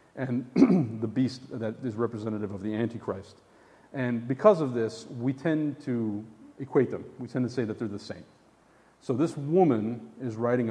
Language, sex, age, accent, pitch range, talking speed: English, male, 40-59, American, 105-130 Hz, 175 wpm